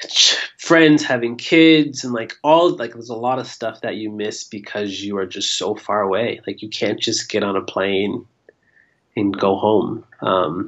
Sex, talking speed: male, 190 wpm